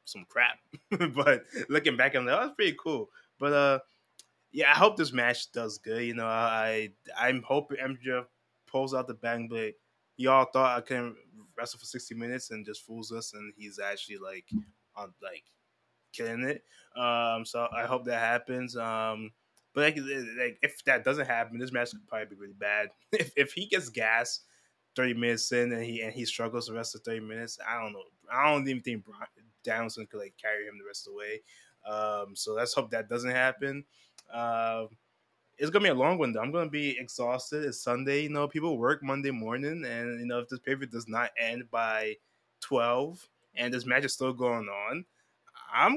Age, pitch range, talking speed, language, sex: 20-39, 115-140 Hz, 205 wpm, English, male